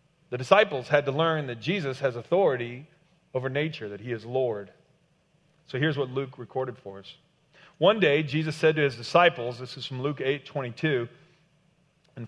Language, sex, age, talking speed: English, male, 40-59, 175 wpm